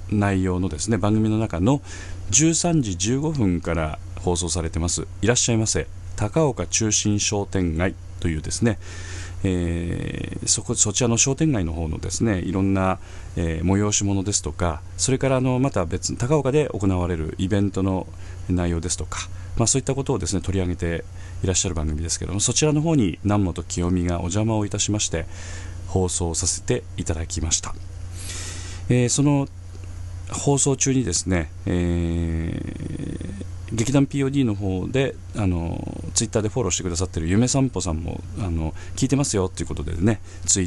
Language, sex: Japanese, male